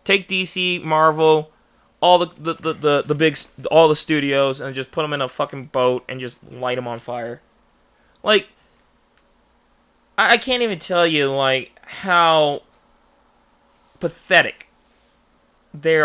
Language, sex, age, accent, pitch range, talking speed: English, male, 20-39, American, 140-185 Hz, 140 wpm